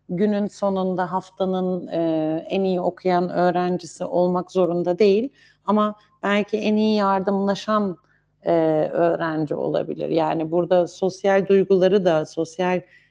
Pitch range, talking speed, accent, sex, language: 165-195 Hz, 115 wpm, native, female, Turkish